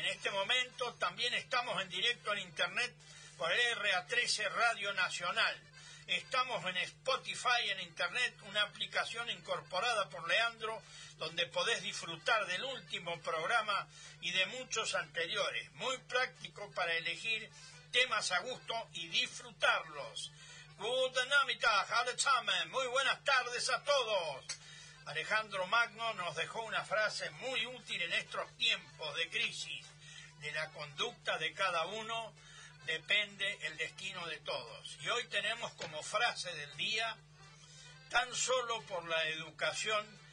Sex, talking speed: male, 125 wpm